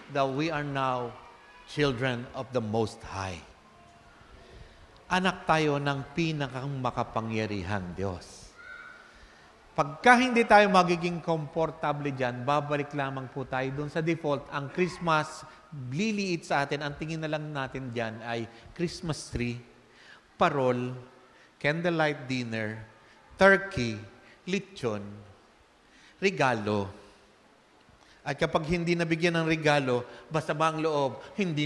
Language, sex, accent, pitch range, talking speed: English, male, Filipino, 110-155 Hz, 110 wpm